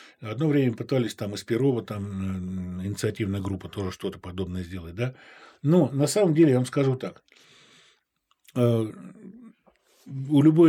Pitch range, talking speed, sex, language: 110-145 Hz, 135 wpm, male, Russian